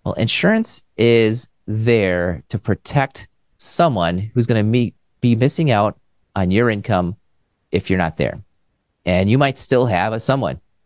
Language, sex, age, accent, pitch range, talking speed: English, male, 30-49, American, 95-135 Hz, 145 wpm